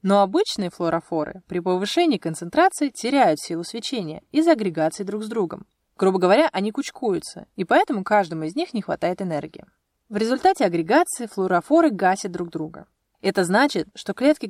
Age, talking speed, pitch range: 20-39, 155 wpm, 175-280 Hz